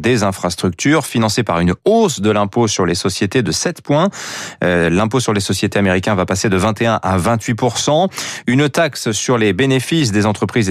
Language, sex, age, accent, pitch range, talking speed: French, male, 30-49, French, 105-150 Hz, 185 wpm